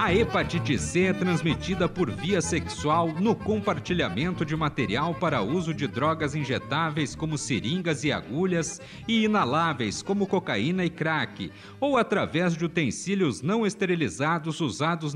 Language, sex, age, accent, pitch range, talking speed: Portuguese, male, 50-69, Brazilian, 155-185 Hz, 135 wpm